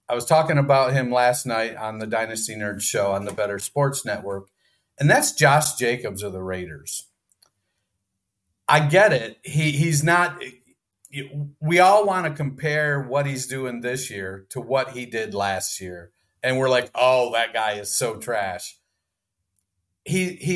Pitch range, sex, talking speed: 105-150 Hz, male, 165 wpm